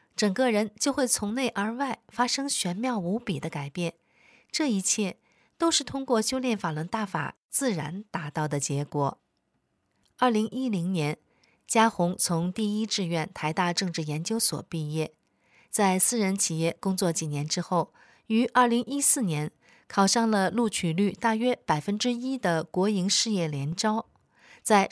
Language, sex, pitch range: Chinese, female, 165-230 Hz